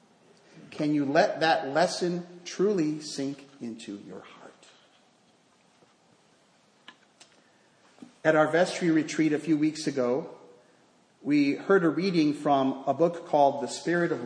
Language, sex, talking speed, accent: English, male, 120 wpm, American